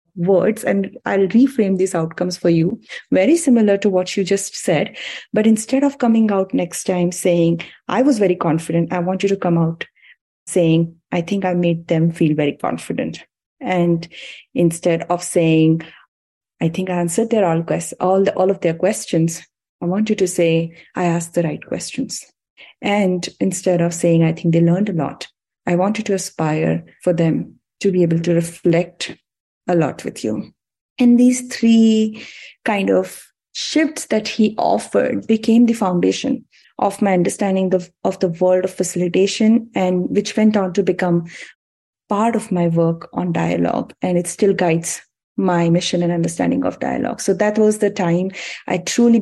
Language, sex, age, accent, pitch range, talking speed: English, female, 30-49, Indian, 170-200 Hz, 175 wpm